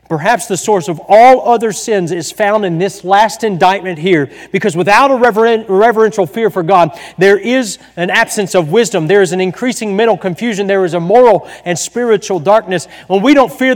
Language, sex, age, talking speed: English, male, 40-59, 195 wpm